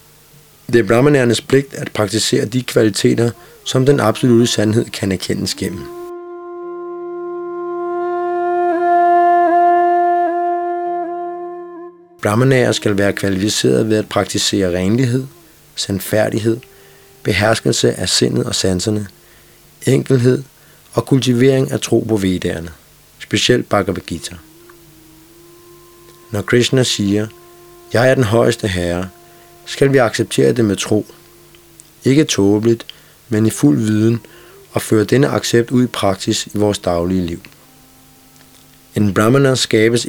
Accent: native